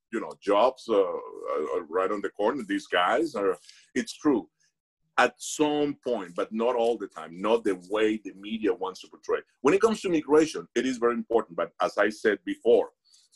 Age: 50-69